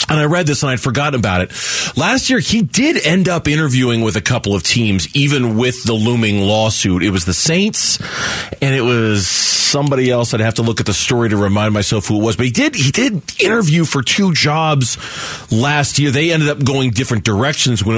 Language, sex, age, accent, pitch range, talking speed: English, male, 30-49, American, 110-145 Hz, 220 wpm